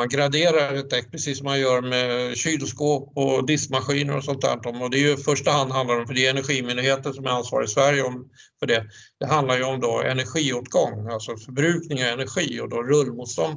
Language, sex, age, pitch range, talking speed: Swedish, male, 60-79, 120-145 Hz, 210 wpm